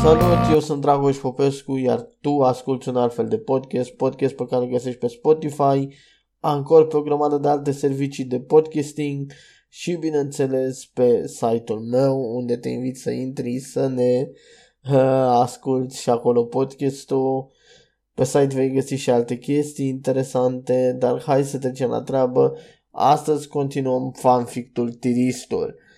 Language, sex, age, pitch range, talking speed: Romanian, male, 20-39, 125-145 Hz, 145 wpm